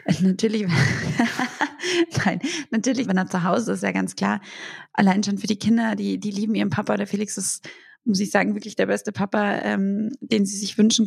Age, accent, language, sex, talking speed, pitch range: 20-39, German, German, female, 200 wpm, 200-235 Hz